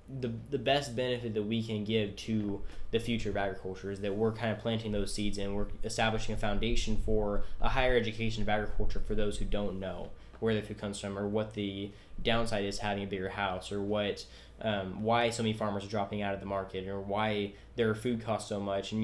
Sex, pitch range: male, 100-115 Hz